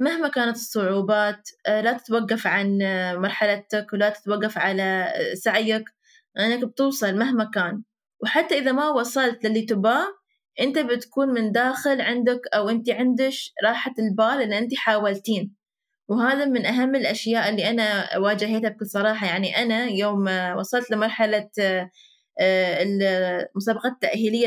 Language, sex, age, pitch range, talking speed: Arabic, female, 20-39, 205-245 Hz, 125 wpm